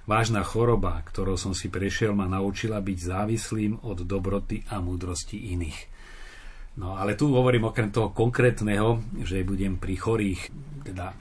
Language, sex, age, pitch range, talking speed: Slovak, male, 40-59, 95-110 Hz, 145 wpm